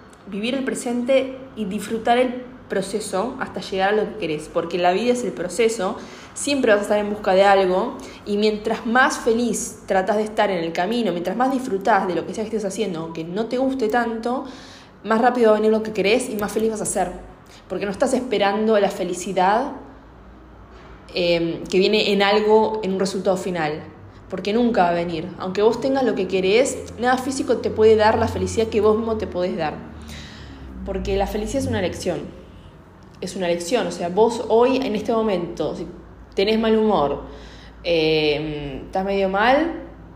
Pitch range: 190-240 Hz